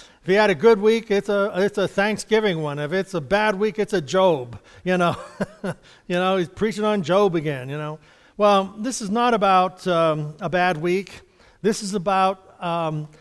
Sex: male